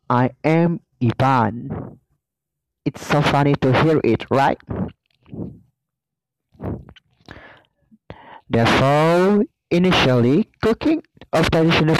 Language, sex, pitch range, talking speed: Malay, male, 135-180 Hz, 75 wpm